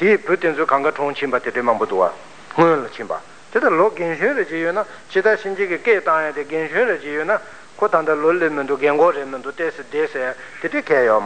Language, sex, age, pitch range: Italian, male, 60-79, 145-205 Hz